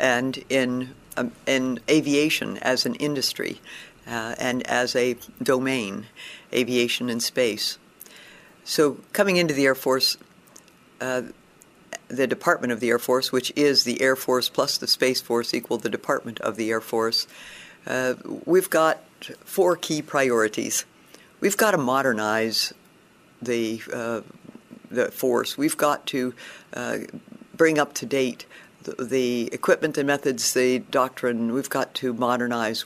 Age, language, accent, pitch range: 60-79, English, American, 120-145 Hz